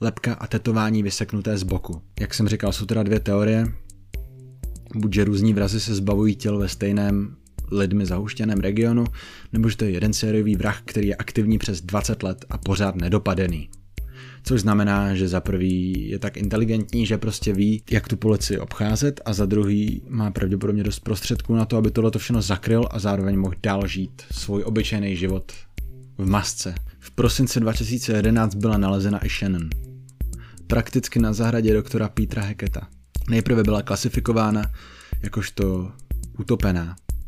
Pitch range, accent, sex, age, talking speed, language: 95-115 Hz, native, male, 20-39, 155 wpm, Czech